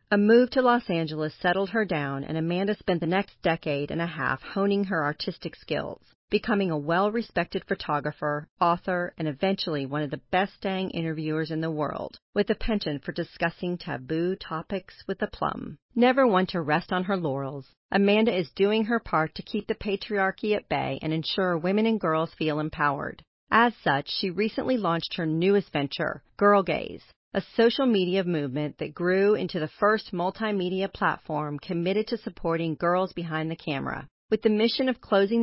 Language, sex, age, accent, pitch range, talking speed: English, female, 40-59, American, 155-200 Hz, 180 wpm